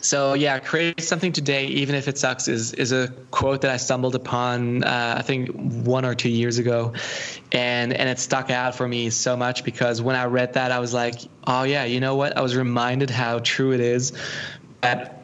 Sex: male